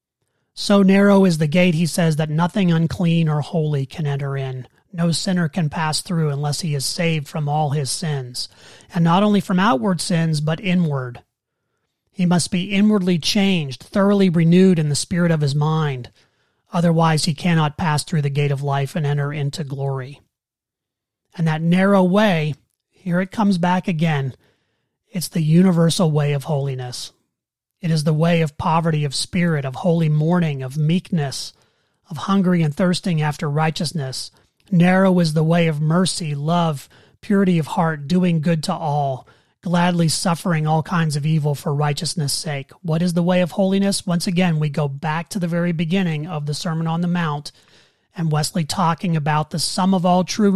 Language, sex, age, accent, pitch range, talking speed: English, male, 30-49, American, 145-180 Hz, 175 wpm